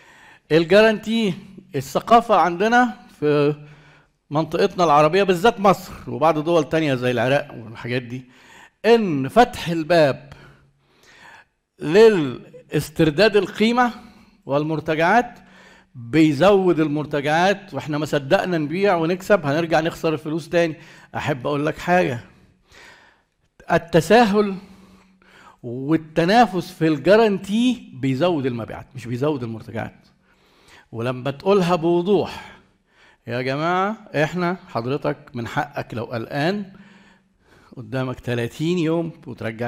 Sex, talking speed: male, 90 wpm